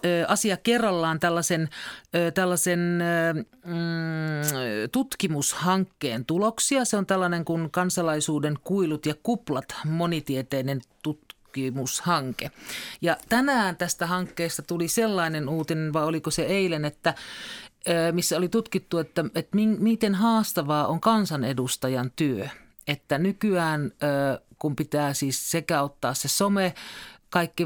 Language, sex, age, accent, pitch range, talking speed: Finnish, male, 40-59, native, 135-175 Hz, 100 wpm